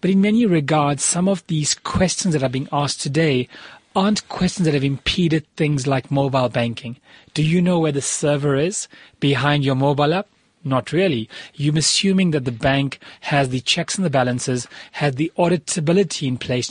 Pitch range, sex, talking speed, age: 135-170 Hz, male, 185 wpm, 30-49